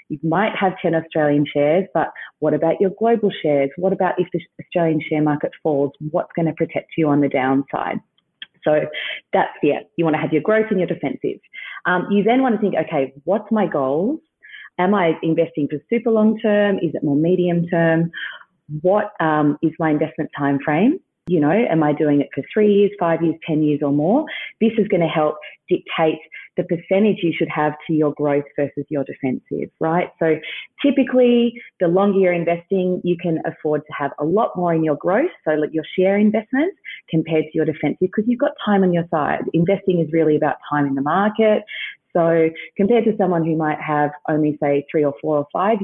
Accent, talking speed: Australian, 205 wpm